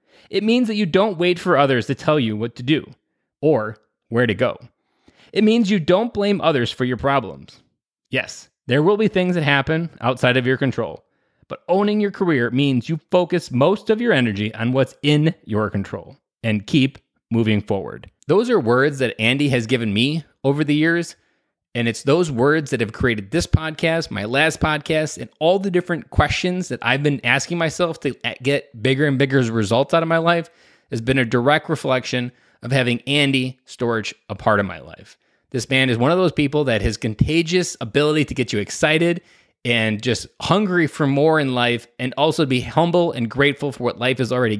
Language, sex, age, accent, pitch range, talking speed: English, male, 20-39, American, 120-165 Hz, 200 wpm